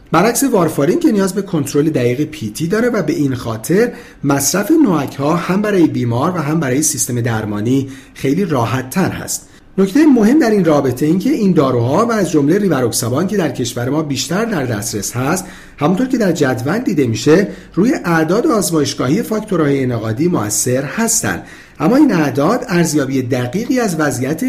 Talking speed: 165 wpm